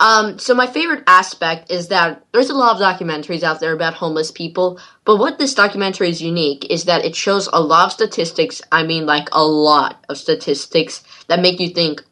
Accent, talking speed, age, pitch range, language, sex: American, 210 wpm, 10-29, 165-200 Hz, English, female